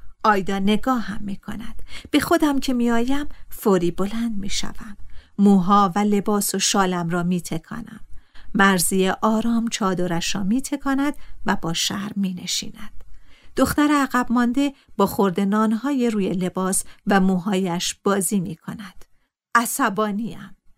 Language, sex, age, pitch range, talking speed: Persian, female, 50-69, 195-275 Hz, 135 wpm